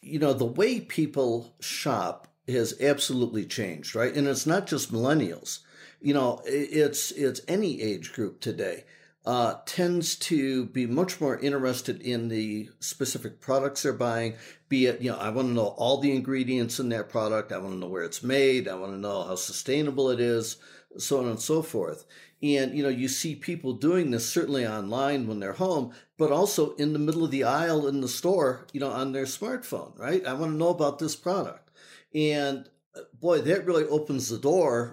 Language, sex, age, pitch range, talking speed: English, male, 50-69, 120-145 Hz, 195 wpm